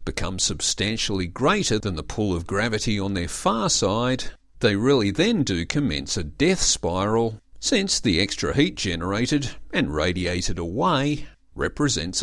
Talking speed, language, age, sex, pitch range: 140 wpm, English, 50-69, male, 90-120 Hz